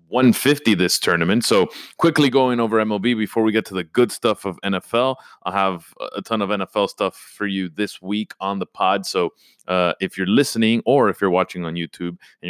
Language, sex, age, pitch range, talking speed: English, male, 30-49, 95-125 Hz, 205 wpm